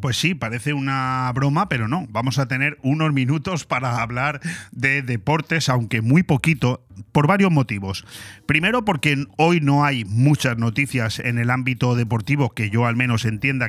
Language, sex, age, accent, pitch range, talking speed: Spanish, male, 30-49, Spanish, 115-135 Hz, 165 wpm